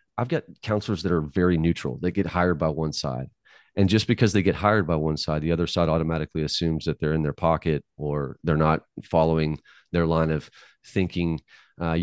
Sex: male